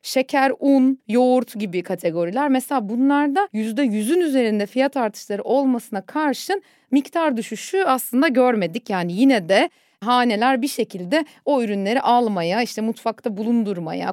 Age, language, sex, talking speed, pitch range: 40-59, Turkish, female, 125 wpm, 215-270 Hz